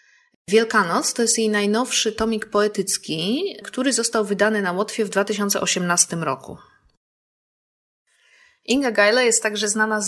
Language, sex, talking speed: Polish, female, 125 wpm